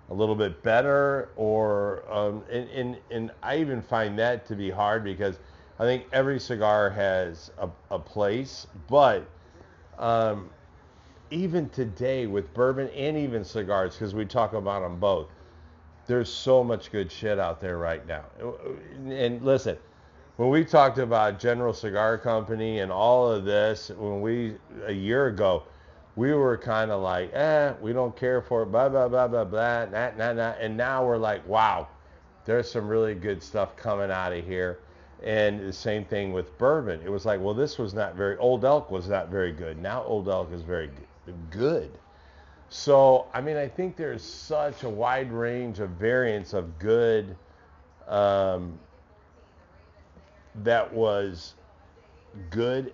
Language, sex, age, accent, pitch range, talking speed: English, male, 50-69, American, 90-120 Hz, 165 wpm